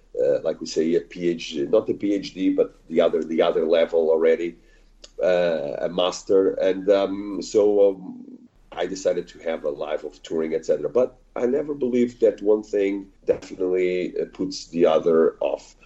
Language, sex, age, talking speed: English, male, 40-59, 170 wpm